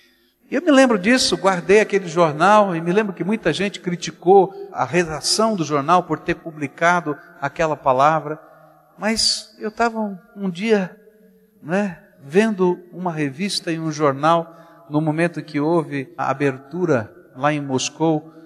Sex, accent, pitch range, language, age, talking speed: male, Brazilian, 135-185 Hz, Portuguese, 60-79, 145 wpm